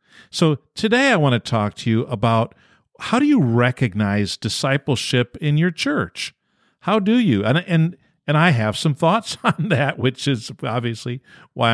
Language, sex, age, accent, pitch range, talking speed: English, male, 50-69, American, 115-170 Hz, 170 wpm